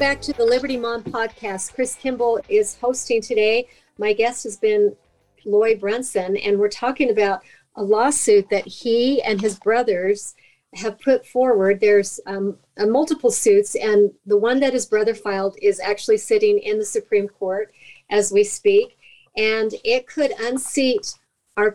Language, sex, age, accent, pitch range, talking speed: English, female, 50-69, American, 205-285 Hz, 160 wpm